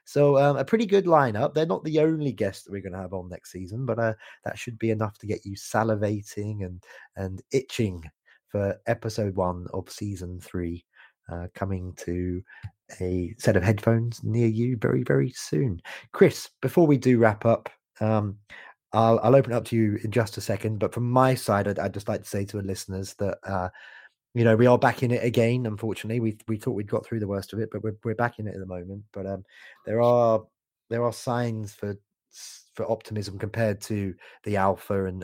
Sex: male